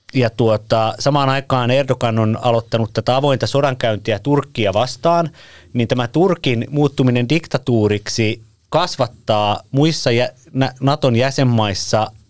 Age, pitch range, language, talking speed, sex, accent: 30-49, 110-140 Hz, Finnish, 105 wpm, male, native